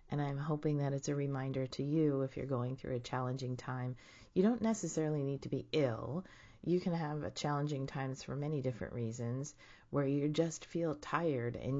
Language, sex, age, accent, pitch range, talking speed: English, female, 30-49, American, 125-155 Hz, 195 wpm